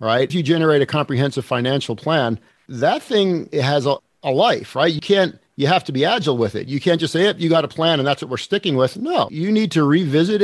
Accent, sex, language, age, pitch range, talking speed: American, male, English, 50-69, 125-175 Hz, 265 wpm